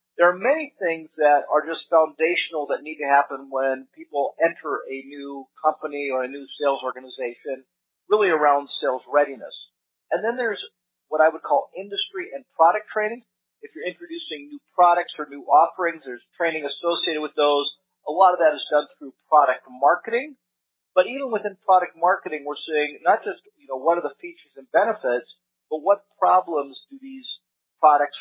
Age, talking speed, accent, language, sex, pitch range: 40-59, 175 wpm, American, English, male, 135-175 Hz